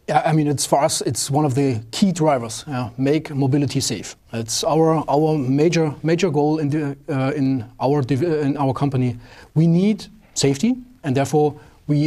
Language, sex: English, male